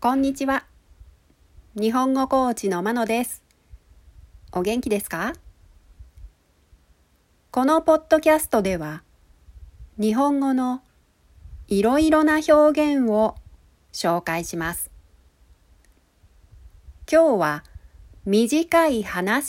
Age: 40-59